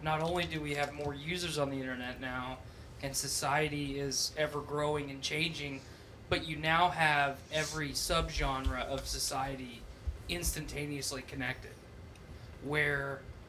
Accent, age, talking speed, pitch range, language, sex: American, 20-39, 130 wpm, 125-155 Hz, English, male